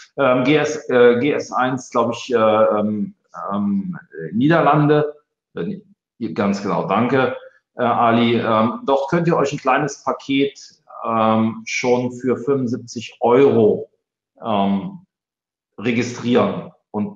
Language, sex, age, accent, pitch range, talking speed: German, male, 40-59, German, 105-140 Hz, 75 wpm